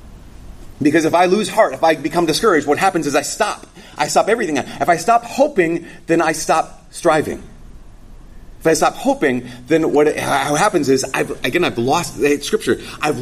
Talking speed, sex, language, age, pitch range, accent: 180 wpm, male, English, 30-49, 110-155 Hz, American